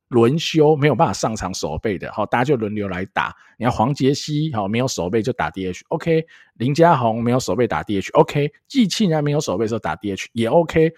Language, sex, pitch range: Chinese, male, 100-150 Hz